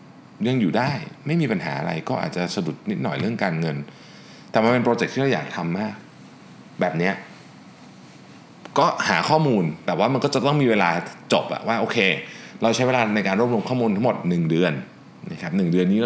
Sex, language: male, Thai